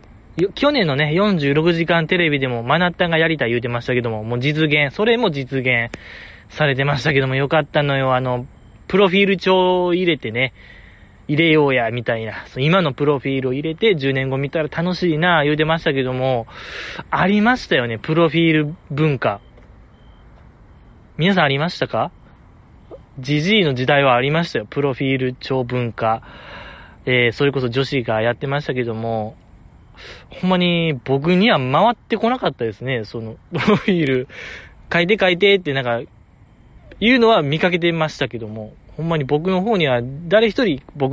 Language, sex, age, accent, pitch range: Japanese, male, 20-39, native, 125-170 Hz